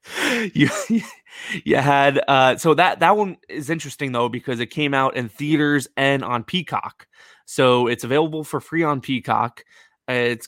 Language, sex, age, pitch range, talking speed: English, male, 20-39, 120-150 Hz, 160 wpm